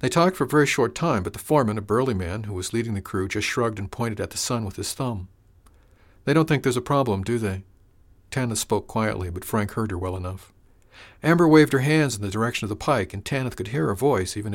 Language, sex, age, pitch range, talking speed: English, male, 50-69, 95-125 Hz, 255 wpm